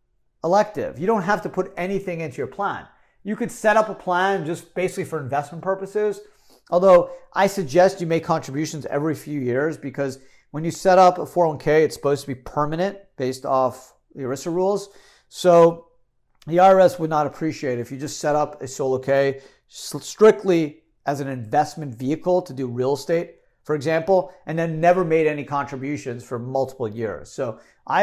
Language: English